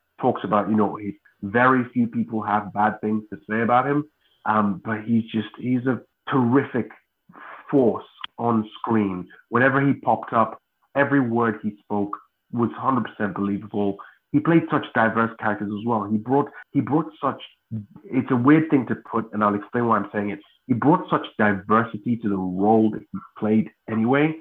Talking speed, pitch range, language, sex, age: 170 wpm, 105-130 Hz, English, male, 30-49